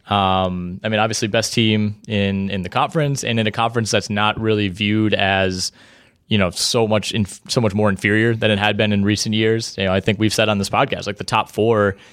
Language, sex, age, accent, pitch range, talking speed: English, male, 20-39, American, 100-115 Hz, 235 wpm